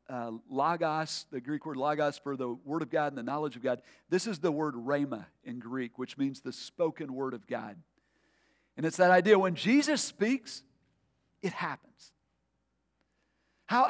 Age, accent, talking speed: 50-69, American, 175 wpm